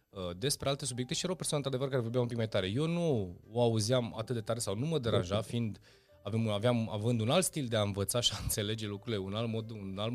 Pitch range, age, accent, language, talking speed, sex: 100-135 Hz, 20-39, native, Romanian, 260 wpm, male